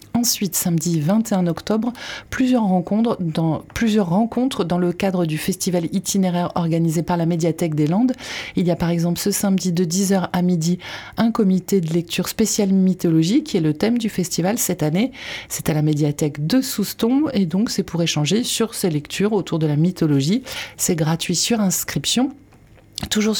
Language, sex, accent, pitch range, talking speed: French, female, French, 165-205 Hz, 175 wpm